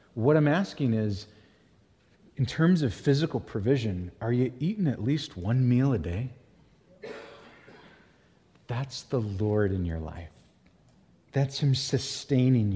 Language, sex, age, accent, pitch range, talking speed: English, male, 30-49, American, 120-170 Hz, 125 wpm